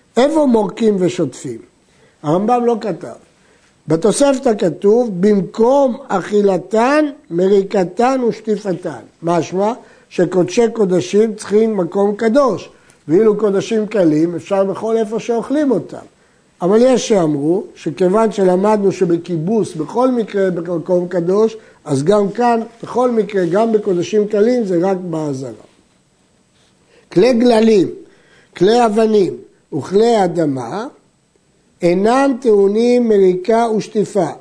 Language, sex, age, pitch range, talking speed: Hebrew, male, 60-79, 175-230 Hz, 100 wpm